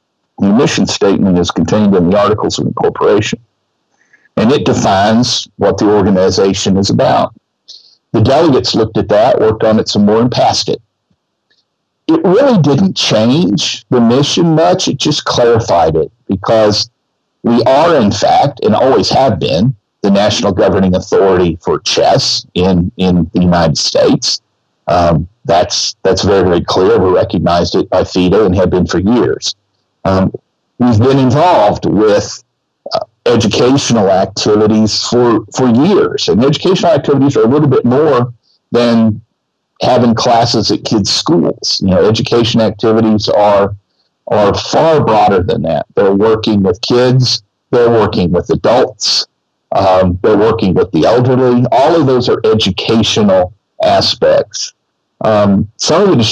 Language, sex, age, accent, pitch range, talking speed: English, male, 50-69, American, 100-125 Hz, 145 wpm